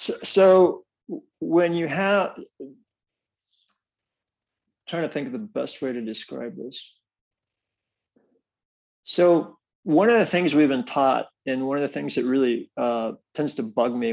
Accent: American